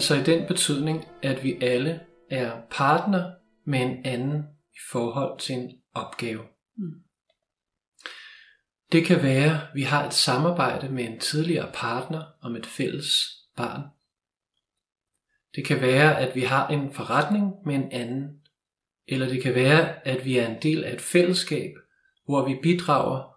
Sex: male